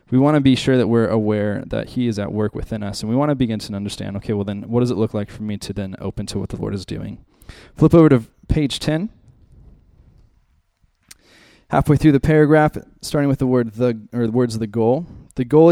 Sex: male